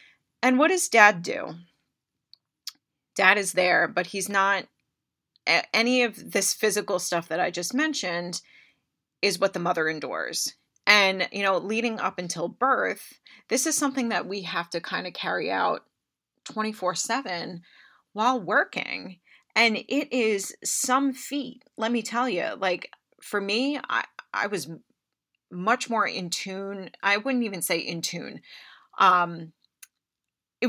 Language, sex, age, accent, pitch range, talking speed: English, female, 30-49, American, 175-230 Hz, 145 wpm